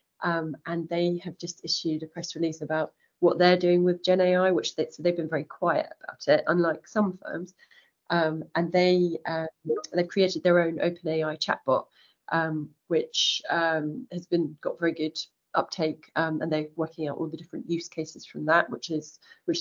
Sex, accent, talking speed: female, British, 190 wpm